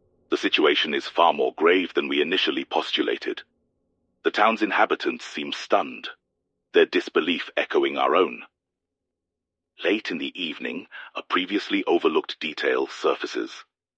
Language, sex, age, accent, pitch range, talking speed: English, male, 40-59, British, 330-400 Hz, 125 wpm